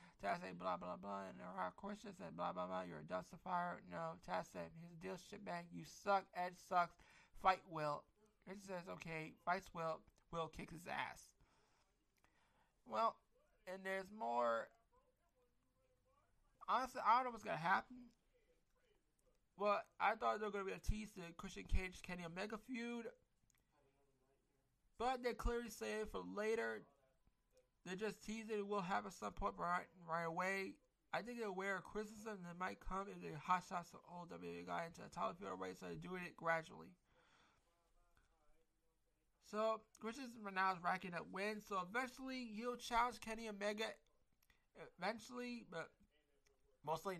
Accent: American